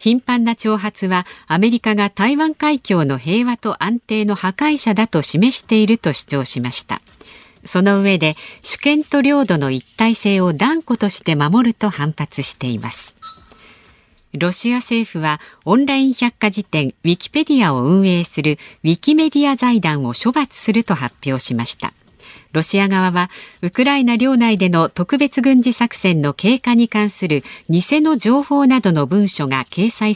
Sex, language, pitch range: female, Japanese, 155-235 Hz